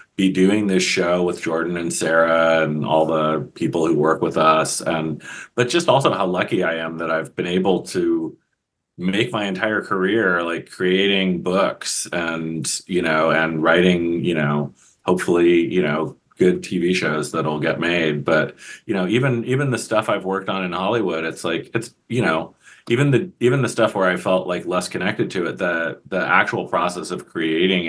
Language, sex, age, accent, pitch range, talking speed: English, male, 30-49, American, 80-90 Hz, 190 wpm